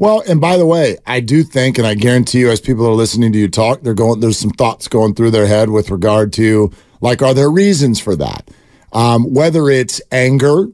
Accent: American